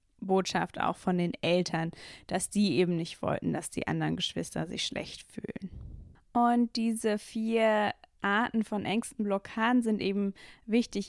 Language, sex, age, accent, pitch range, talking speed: German, female, 20-39, German, 180-220 Hz, 145 wpm